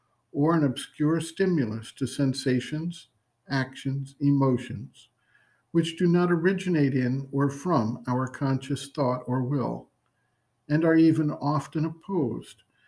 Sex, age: male, 60-79